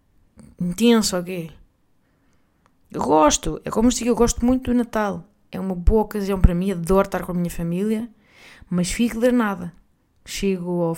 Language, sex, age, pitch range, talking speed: Portuguese, female, 20-39, 180-215 Hz, 165 wpm